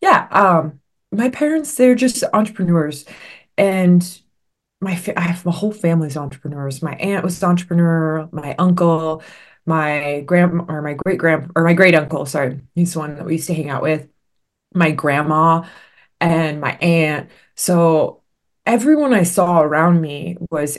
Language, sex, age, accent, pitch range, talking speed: English, female, 20-39, American, 145-175 Hz, 150 wpm